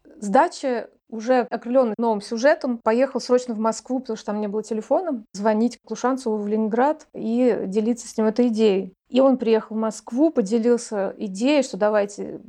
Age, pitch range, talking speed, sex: 30-49, 220-260 Hz, 165 wpm, female